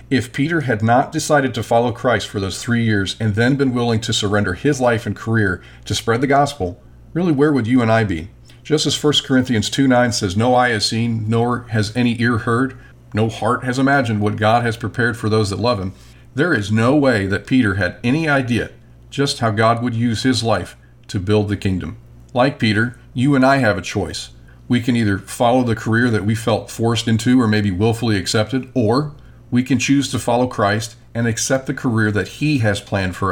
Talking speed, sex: 220 wpm, male